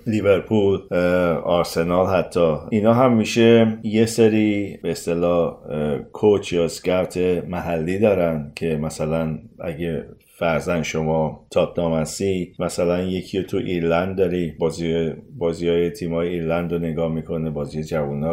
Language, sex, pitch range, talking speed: Persian, male, 85-95 Hz, 125 wpm